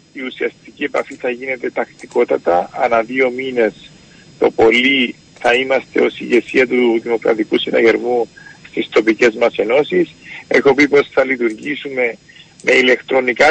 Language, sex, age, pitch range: Greek, male, 50-69, 125-160 Hz